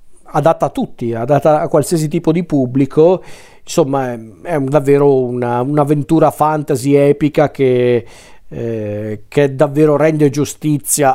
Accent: native